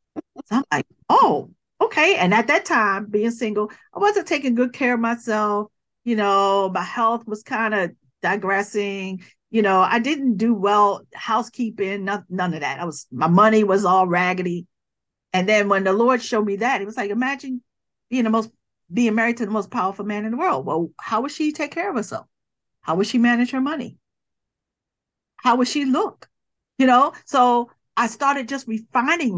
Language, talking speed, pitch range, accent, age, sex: English, 190 wpm, 205-280 Hz, American, 50-69, female